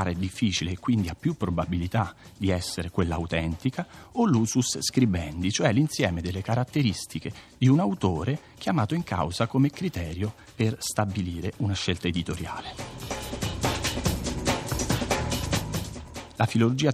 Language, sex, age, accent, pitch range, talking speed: Italian, male, 40-59, native, 90-125 Hz, 115 wpm